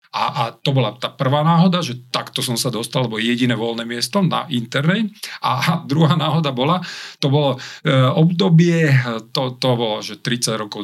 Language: Slovak